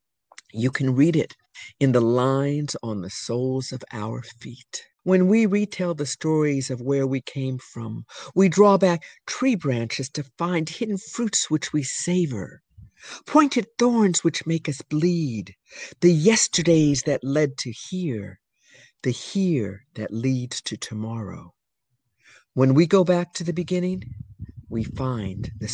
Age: 50-69